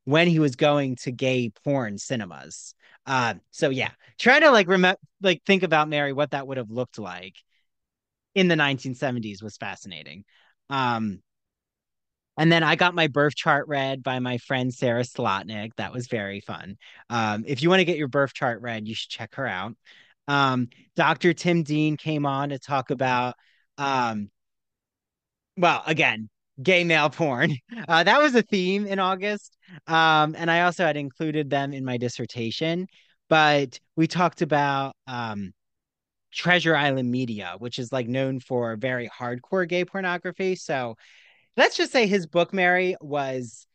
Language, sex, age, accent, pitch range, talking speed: English, male, 30-49, American, 120-165 Hz, 165 wpm